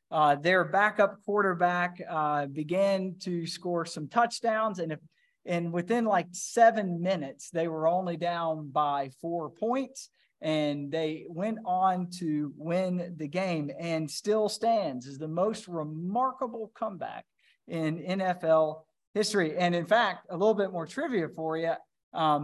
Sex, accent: male, American